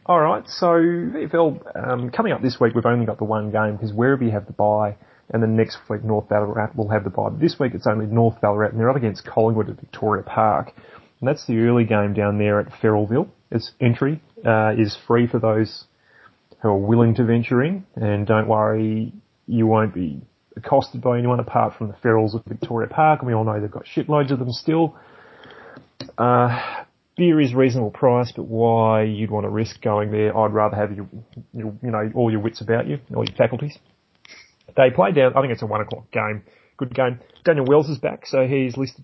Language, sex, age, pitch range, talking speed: English, male, 30-49, 110-130 Hz, 220 wpm